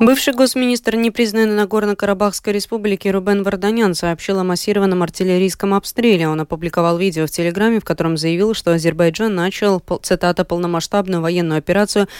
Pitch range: 165-210 Hz